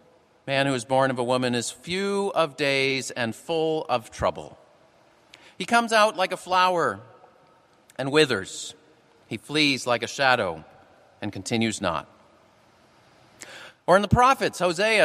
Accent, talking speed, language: American, 145 wpm, English